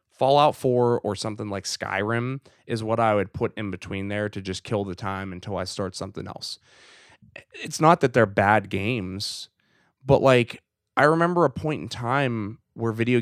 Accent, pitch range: American, 100-125 Hz